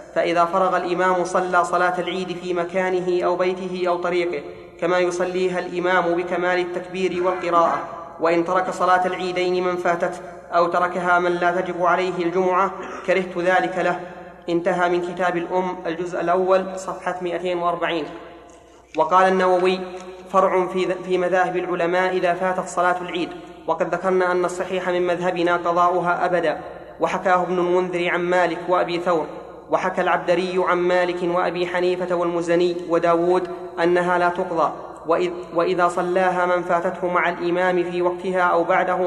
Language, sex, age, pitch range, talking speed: Arabic, male, 20-39, 175-180 Hz, 135 wpm